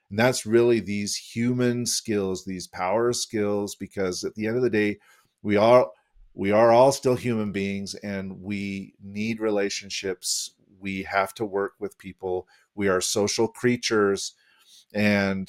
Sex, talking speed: male, 145 wpm